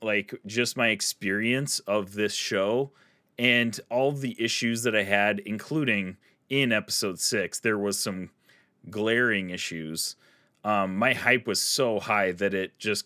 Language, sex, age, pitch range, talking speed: English, male, 30-49, 95-120 Hz, 145 wpm